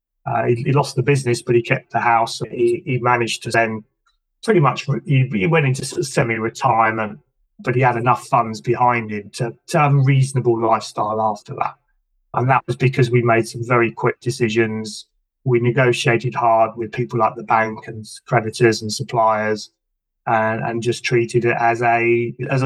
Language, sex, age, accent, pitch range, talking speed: English, male, 30-49, British, 115-135 Hz, 180 wpm